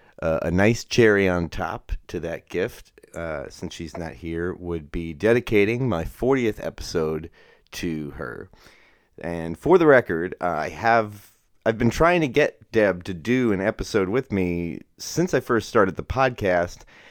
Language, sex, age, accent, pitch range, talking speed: English, male, 30-49, American, 85-115 Hz, 155 wpm